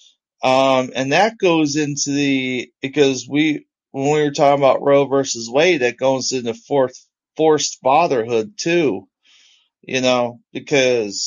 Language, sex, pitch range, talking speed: English, male, 135-175 Hz, 140 wpm